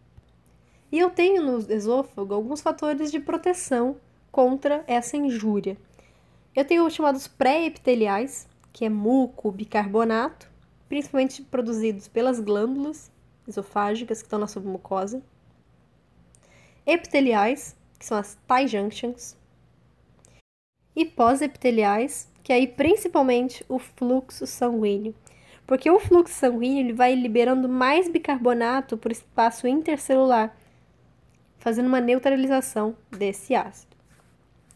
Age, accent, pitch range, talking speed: 10-29, Brazilian, 210-275 Hz, 110 wpm